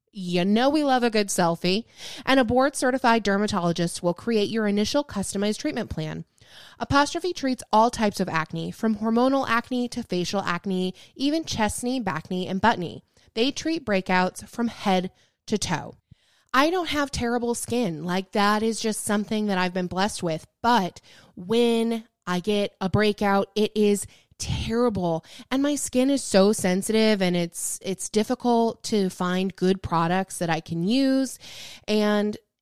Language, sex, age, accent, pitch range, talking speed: English, female, 20-39, American, 185-240 Hz, 160 wpm